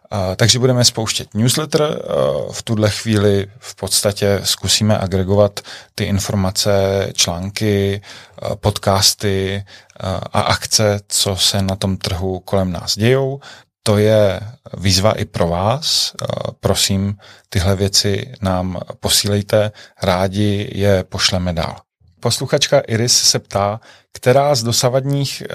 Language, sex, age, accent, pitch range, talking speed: Czech, male, 30-49, native, 100-115 Hz, 110 wpm